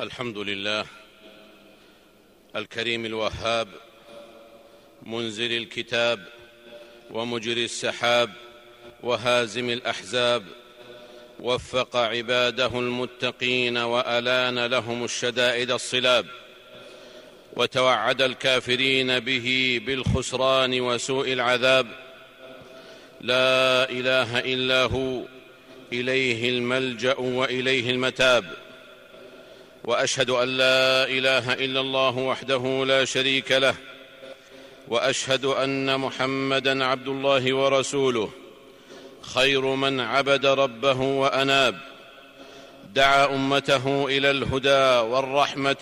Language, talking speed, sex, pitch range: Arabic, 75 wpm, male, 120-135 Hz